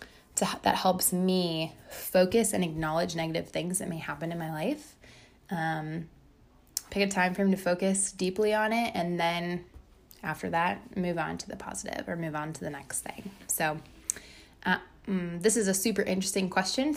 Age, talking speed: 20-39, 175 wpm